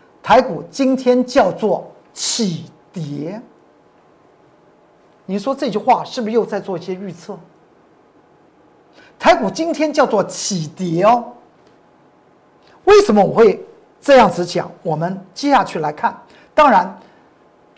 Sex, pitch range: male, 190-260 Hz